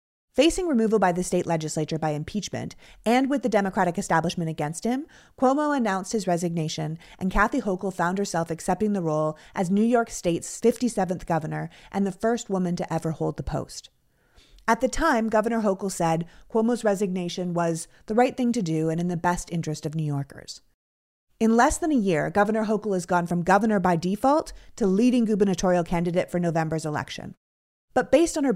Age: 30-49